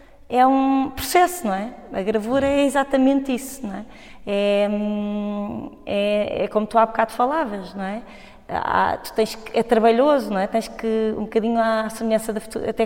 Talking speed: 175 wpm